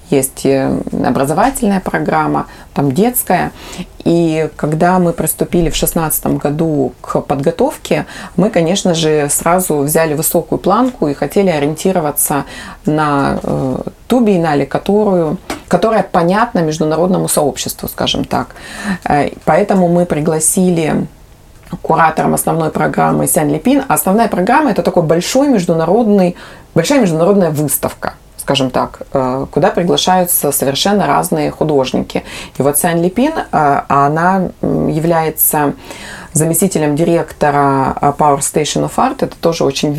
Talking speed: 105 wpm